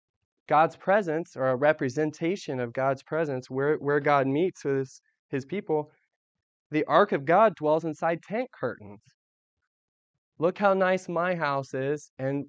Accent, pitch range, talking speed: American, 130-160 Hz, 150 wpm